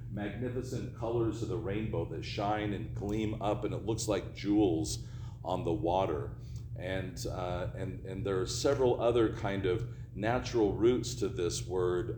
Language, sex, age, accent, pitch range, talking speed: English, male, 50-69, American, 105-120 Hz, 165 wpm